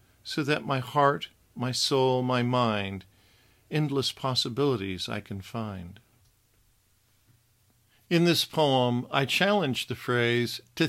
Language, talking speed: English, 115 wpm